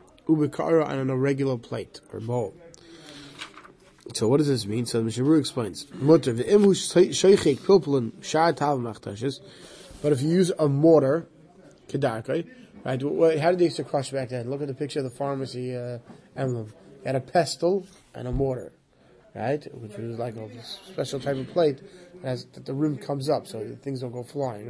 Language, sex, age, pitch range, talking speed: English, male, 20-39, 130-170 Hz, 165 wpm